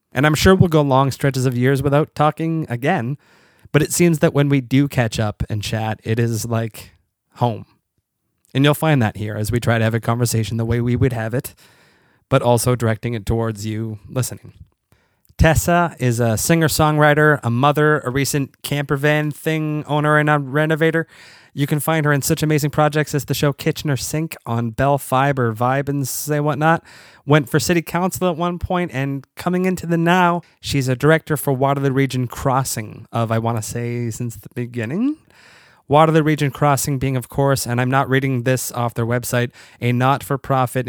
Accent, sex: American, male